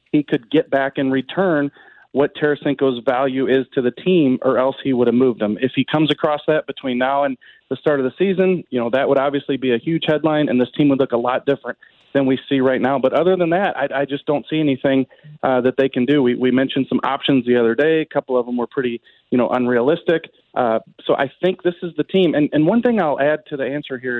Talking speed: 260 wpm